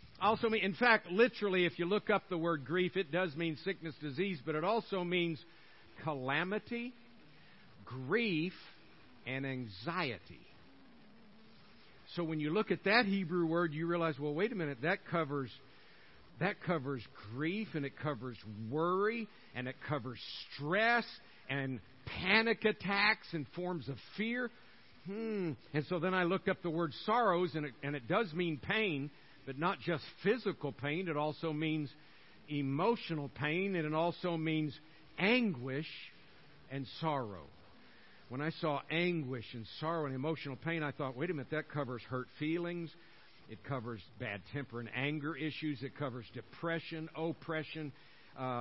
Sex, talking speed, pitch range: male, 150 wpm, 140-180 Hz